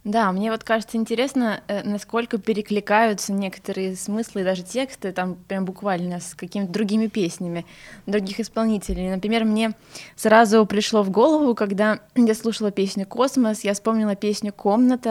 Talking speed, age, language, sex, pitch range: 145 wpm, 20-39, Russian, female, 195-235 Hz